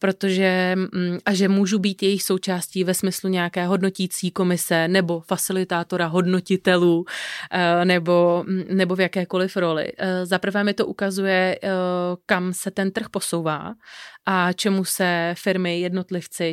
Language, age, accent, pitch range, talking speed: Czech, 30-49, native, 175-195 Hz, 125 wpm